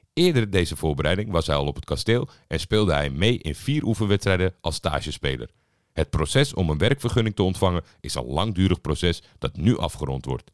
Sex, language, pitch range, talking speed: male, Dutch, 80-120 Hz, 190 wpm